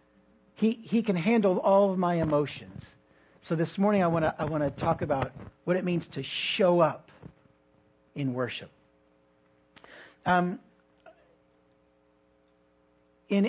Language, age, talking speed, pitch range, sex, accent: English, 50-69, 120 wpm, 130-175 Hz, male, American